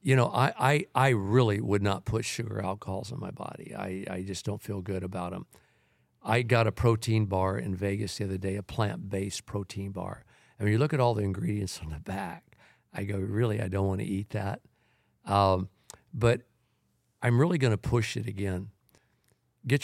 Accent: American